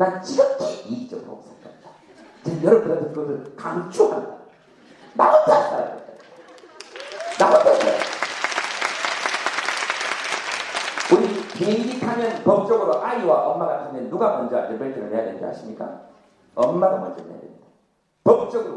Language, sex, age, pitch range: Korean, male, 40-59, 180-295 Hz